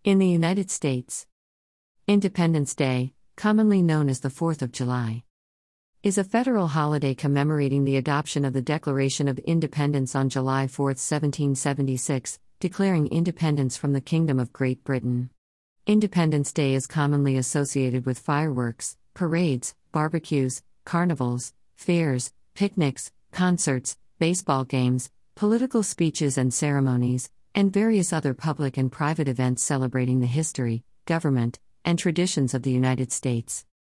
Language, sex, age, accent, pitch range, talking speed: English, female, 50-69, American, 130-160 Hz, 130 wpm